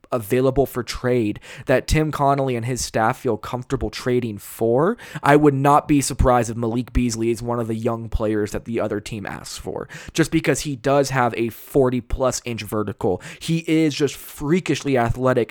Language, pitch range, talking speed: English, 120-155 Hz, 180 wpm